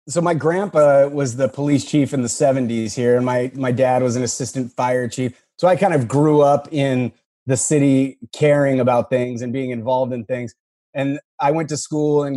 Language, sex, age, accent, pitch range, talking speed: English, male, 30-49, American, 125-140 Hz, 210 wpm